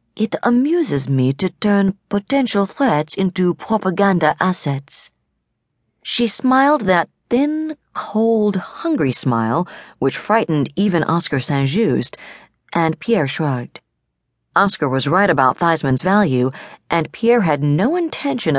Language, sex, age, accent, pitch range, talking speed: English, female, 40-59, American, 135-195 Hz, 115 wpm